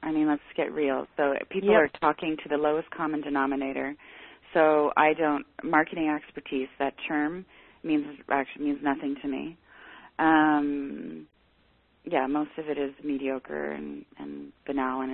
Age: 30-49